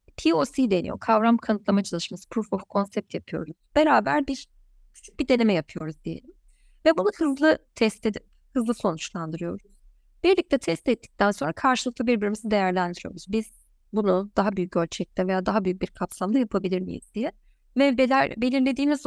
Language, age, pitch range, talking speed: Turkish, 30-49, 205-270 Hz, 140 wpm